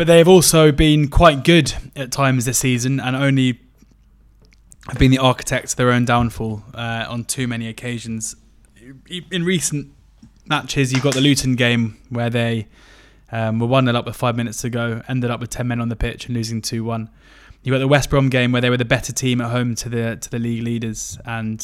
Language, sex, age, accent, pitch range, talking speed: English, male, 20-39, British, 115-130 Hz, 210 wpm